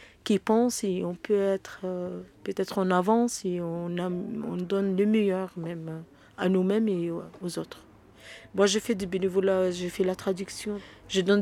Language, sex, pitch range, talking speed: French, female, 170-200 Hz, 170 wpm